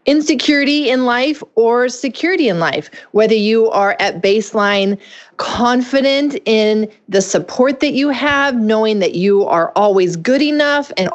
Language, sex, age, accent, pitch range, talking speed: English, female, 30-49, American, 180-245 Hz, 145 wpm